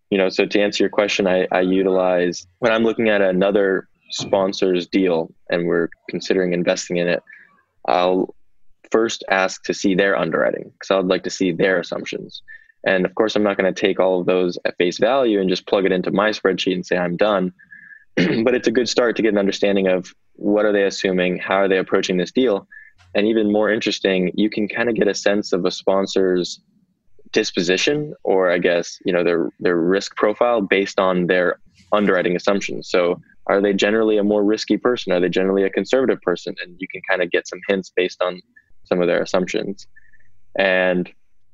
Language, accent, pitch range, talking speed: English, American, 90-105 Hz, 200 wpm